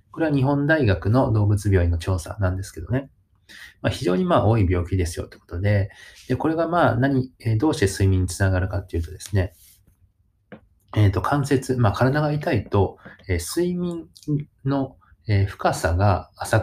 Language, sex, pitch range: Japanese, male, 95-130 Hz